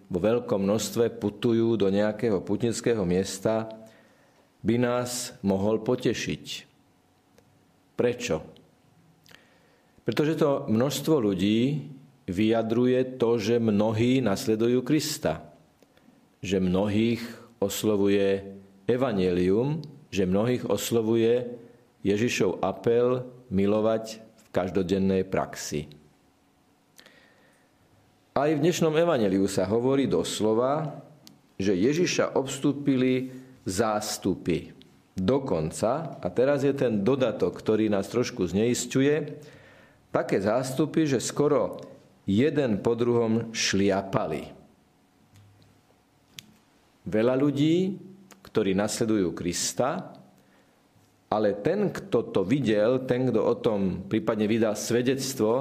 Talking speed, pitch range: 90 wpm, 100-130 Hz